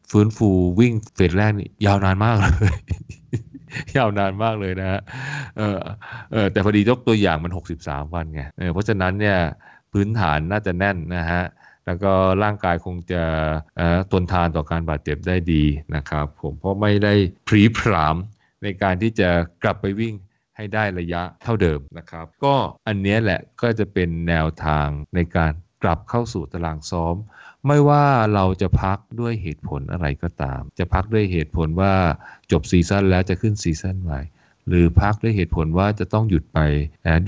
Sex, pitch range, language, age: male, 80-105 Hz, Thai, 20-39